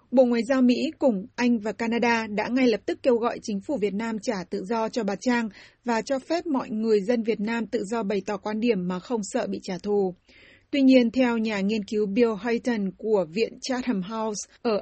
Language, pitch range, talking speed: Vietnamese, 215-250 Hz, 230 wpm